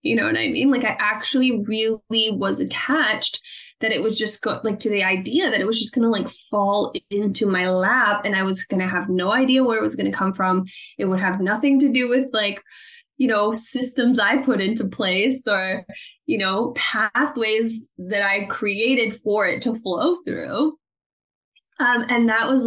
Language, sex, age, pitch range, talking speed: English, female, 10-29, 195-270 Hz, 205 wpm